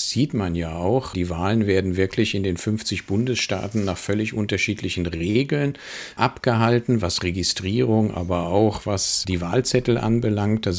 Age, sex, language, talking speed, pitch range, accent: 50-69, male, German, 145 wpm, 95-120 Hz, German